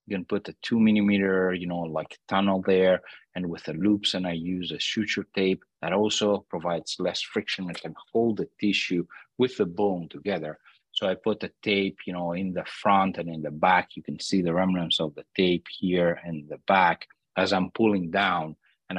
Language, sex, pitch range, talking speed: English, male, 85-100 Hz, 210 wpm